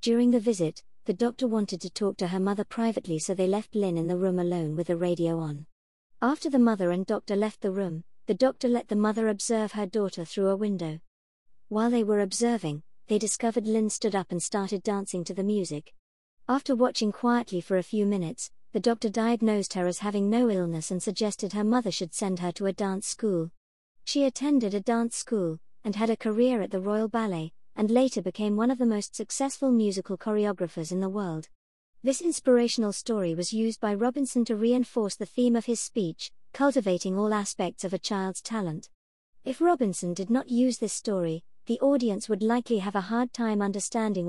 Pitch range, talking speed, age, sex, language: 185-235 Hz, 200 wpm, 50-69, male, English